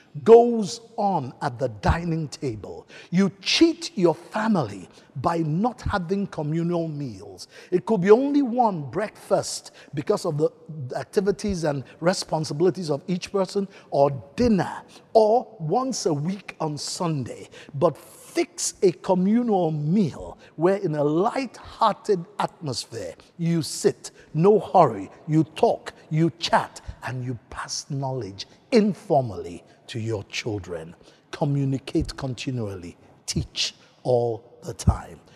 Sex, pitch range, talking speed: male, 140-195 Hz, 120 wpm